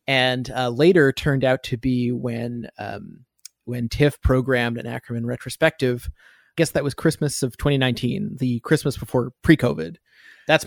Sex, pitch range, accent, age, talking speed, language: male, 120-150 Hz, American, 30-49, 150 wpm, English